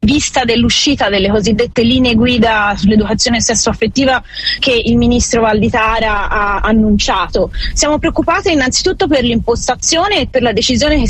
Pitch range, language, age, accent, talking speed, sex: 225-275 Hz, Italian, 20-39, native, 135 wpm, female